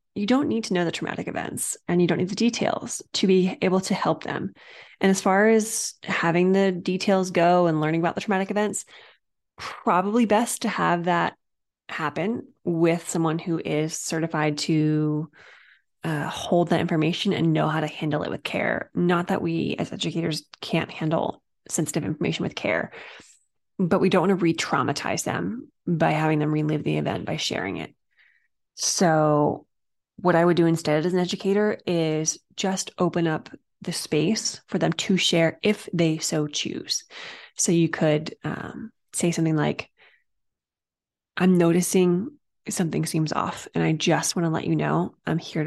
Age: 20-39